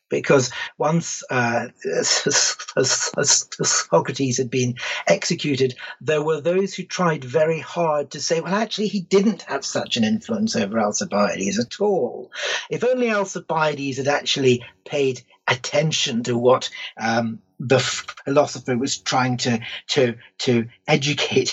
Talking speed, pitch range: 130 wpm, 120-160 Hz